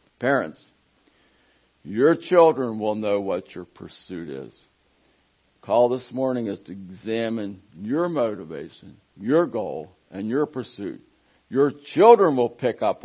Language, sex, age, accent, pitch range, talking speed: English, male, 60-79, American, 90-110 Hz, 125 wpm